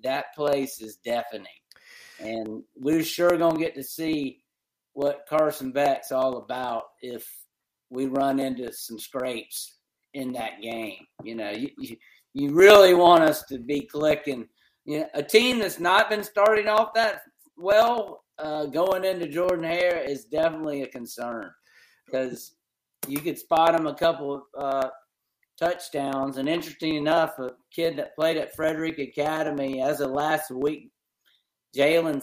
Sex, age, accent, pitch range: male, 50-69, American, 130-165 Hz